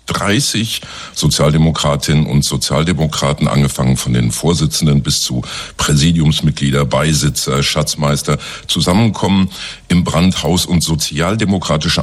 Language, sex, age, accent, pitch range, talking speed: German, male, 50-69, German, 70-85 Hz, 90 wpm